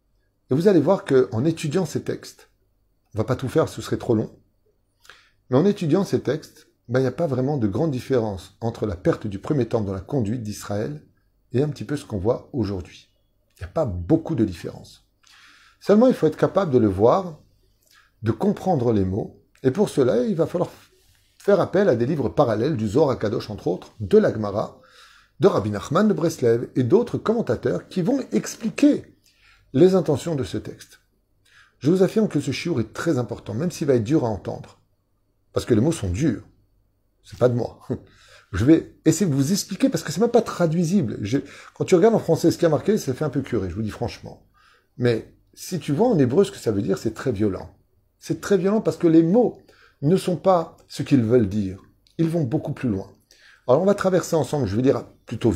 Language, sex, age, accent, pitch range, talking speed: French, male, 30-49, French, 105-170 Hz, 220 wpm